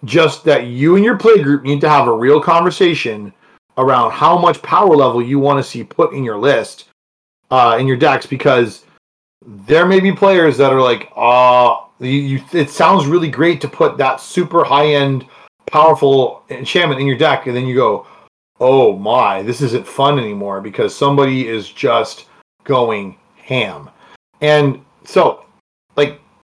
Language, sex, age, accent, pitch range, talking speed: English, male, 30-49, American, 125-150 Hz, 170 wpm